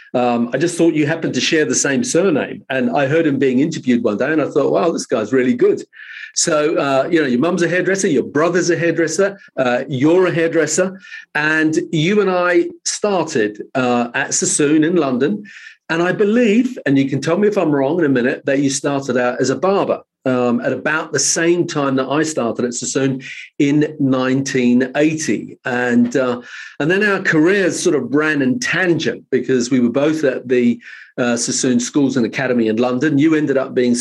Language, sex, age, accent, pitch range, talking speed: English, male, 40-59, British, 130-165 Hz, 205 wpm